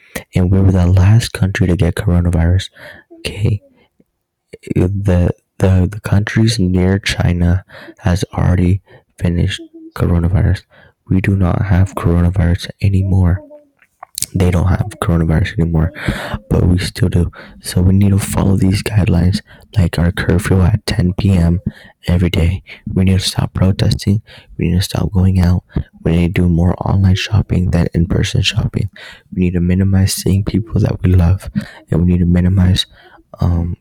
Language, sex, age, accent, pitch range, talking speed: English, male, 20-39, American, 90-100 Hz, 155 wpm